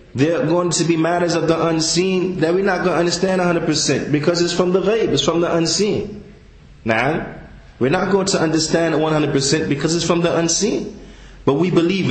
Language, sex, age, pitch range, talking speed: English, male, 30-49, 135-175 Hz, 200 wpm